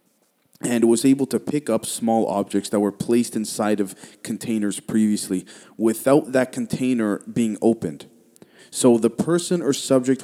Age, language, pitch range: 20-39, English, 105-135 Hz